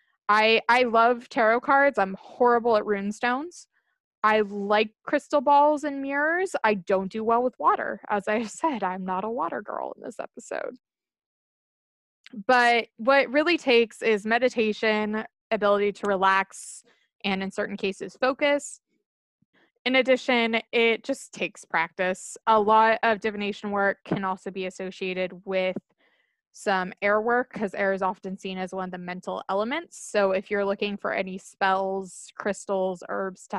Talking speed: 155 wpm